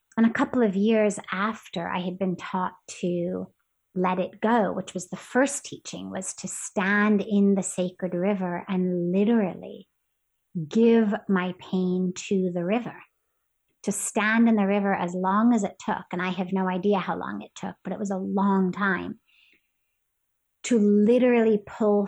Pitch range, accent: 180-210 Hz, American